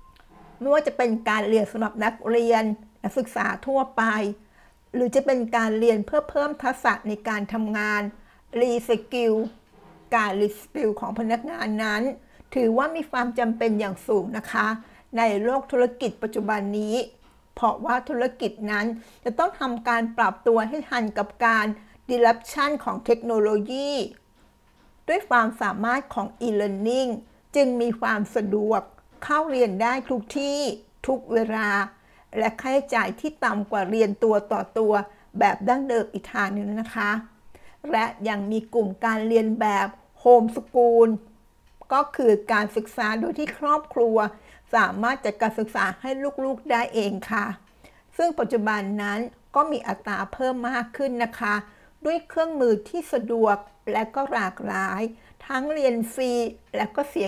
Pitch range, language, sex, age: 215-255 Hz, Thai, female, 60-79